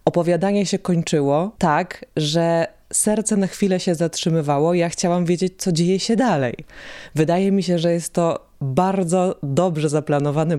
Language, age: Polish, 20-39